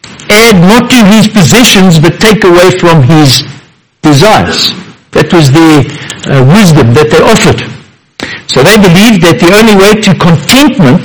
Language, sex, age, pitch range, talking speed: English, male, 60-79, 160-210 Hz, 145 wpm